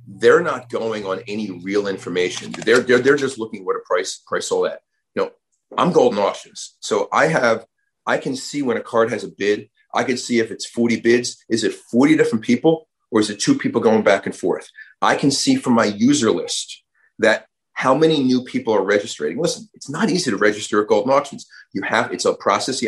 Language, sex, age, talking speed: English, male, 30-49, 225 wpm